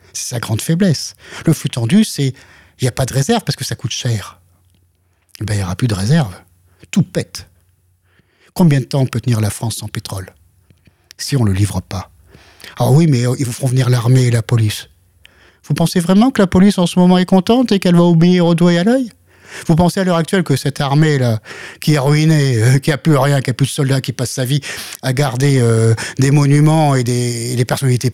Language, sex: French, male